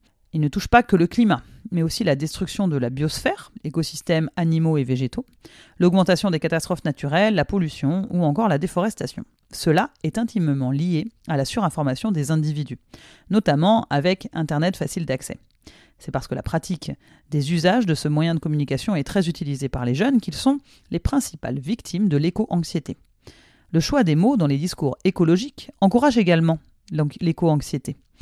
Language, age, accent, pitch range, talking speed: French, 40-59, French, 145-190 Hz, 165 wpm